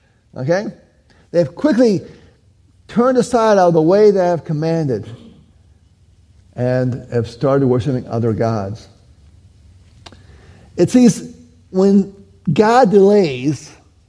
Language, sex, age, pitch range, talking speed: English, male, 50-69, 105-170 Hz, 100 wpm